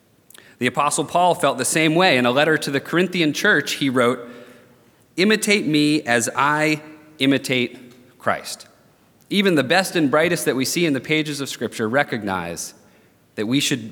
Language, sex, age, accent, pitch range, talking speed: English, male, 30-49, American, 120-155 Hz, 170 wpm